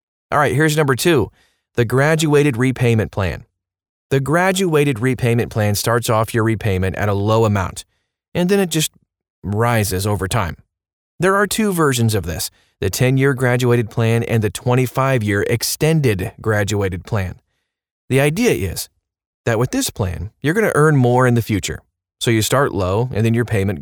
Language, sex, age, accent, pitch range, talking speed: English, male, 30-49, American, 105-140 Hz, 165 wpm